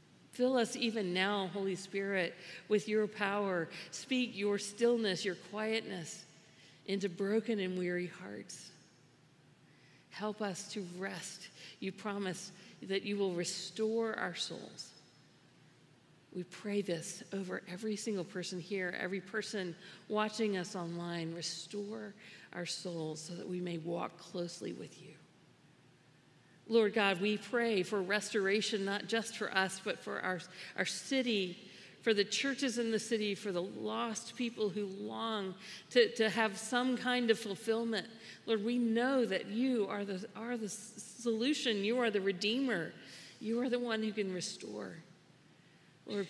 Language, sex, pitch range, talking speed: English, female, 180-220 Hz, 145 wpm